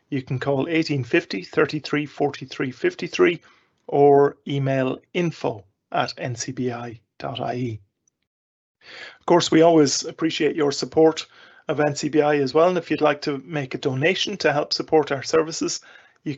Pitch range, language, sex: 135-160 Hz, English, male